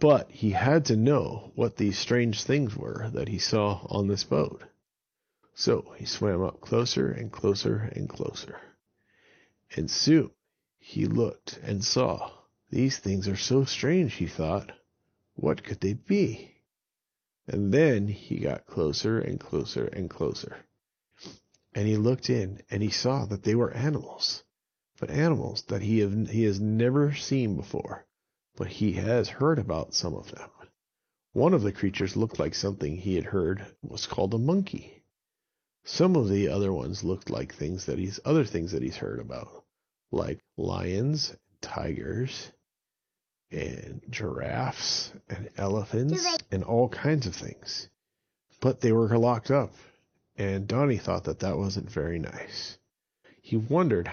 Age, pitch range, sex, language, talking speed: 40-59, 100-130 Hz, male, English, 150 wpm